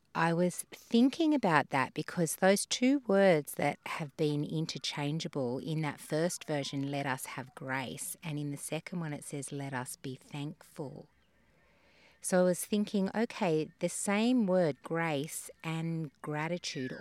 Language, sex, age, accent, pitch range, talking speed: English, female, 30-49, Australian, 140-175 Hz, 150 wpm